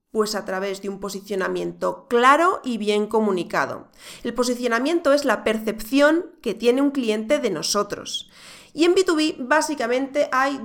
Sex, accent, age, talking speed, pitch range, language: female, Spanish, 30-49, 145 wpm, 210-300 Hz, Spanish